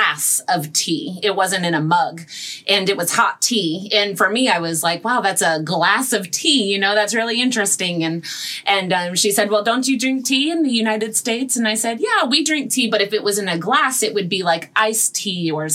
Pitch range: 185-235 Hz